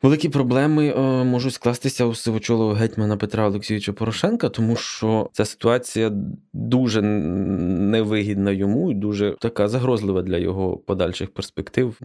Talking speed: 125 wpm